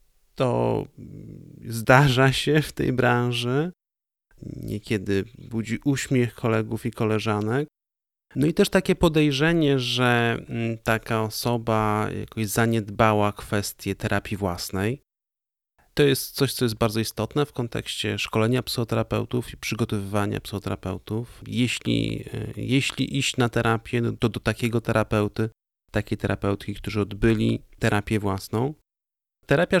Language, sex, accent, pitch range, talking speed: Polish, male, native, 105-125 Hz, 115 wpm